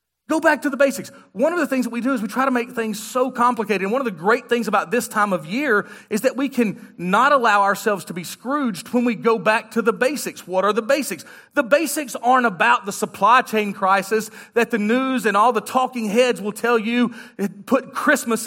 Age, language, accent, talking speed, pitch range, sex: 40-59, English, American, 235 wpm, 190-265 Hz, male